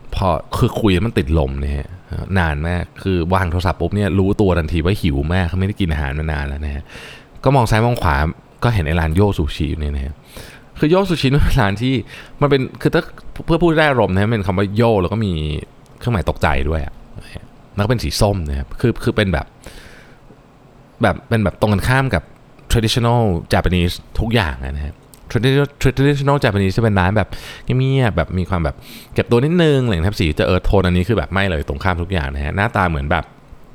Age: 20-39